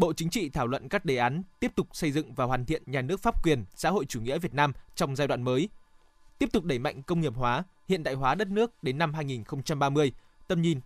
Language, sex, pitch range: Vietnamese, male, 140-170 Hz